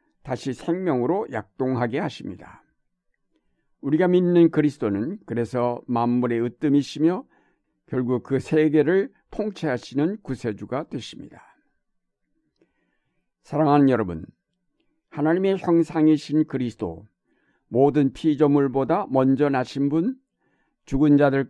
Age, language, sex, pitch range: 60-79, Korean, male, 120-155 Hz